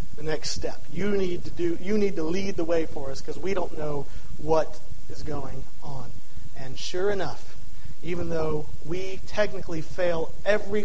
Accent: American